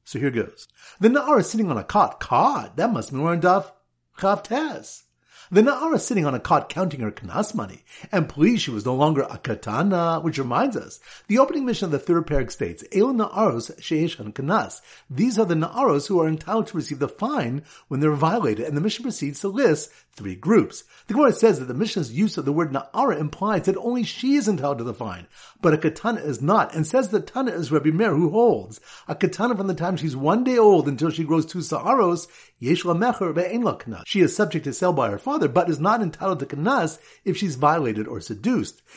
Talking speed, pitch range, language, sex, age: 220 wpm, 145-205 Hz, English, male, 50-69